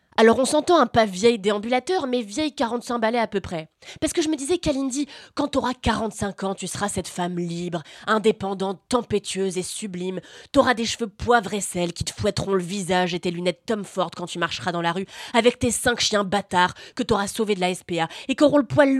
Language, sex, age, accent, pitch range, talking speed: French, female, 20-39, French, 185-275 Hz, 220 wpm